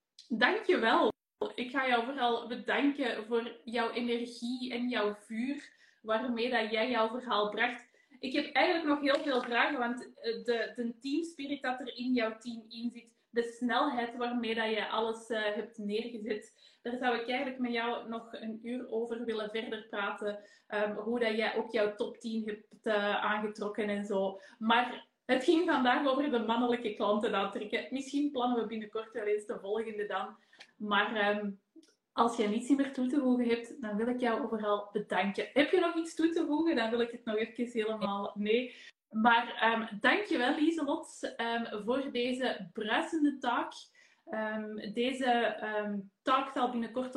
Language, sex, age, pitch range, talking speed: Dutch, female, 20-39, 220-250 Hz, 175 wpm